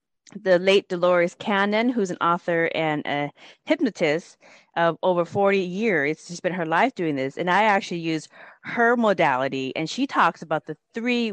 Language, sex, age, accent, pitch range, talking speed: English, female, 30-49, American, 170-240 Hz, 170 wpm